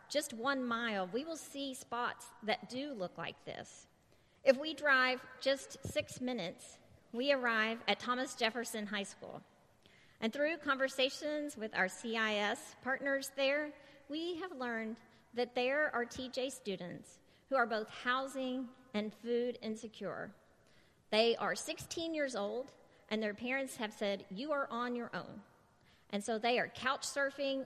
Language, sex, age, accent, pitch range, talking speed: English, female, 40-59, American, 210-270 Hz, 150 wpm